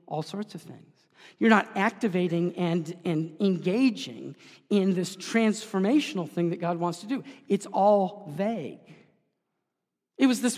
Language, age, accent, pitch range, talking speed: English, 40-59, American, 175-225 Hz, 140 wpm